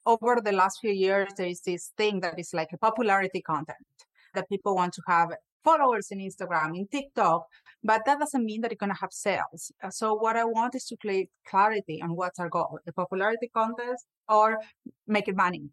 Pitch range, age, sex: 180-220 Hz, 30-49, female